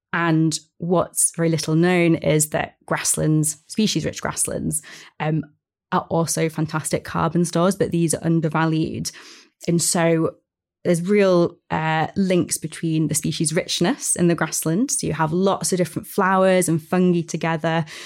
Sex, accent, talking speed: female, British, 145 wpm